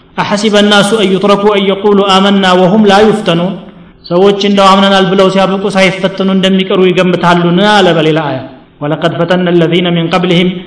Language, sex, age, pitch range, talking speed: Amharic, male, 30-49, 180-210 Hz, 145 wpm